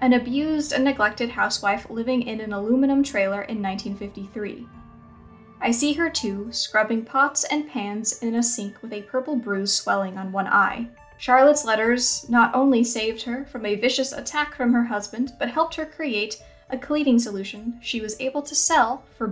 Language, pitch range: English, 210-265 Hz